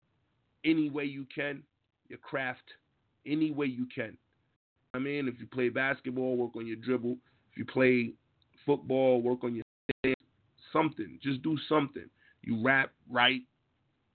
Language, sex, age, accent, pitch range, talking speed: English, male, 30-49, American, 120-135 Hz, 160 wpm